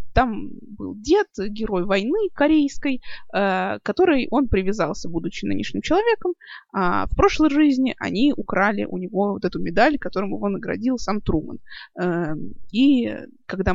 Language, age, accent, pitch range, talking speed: Russian, 20-39, native, 185-290 Hz, 135 wpm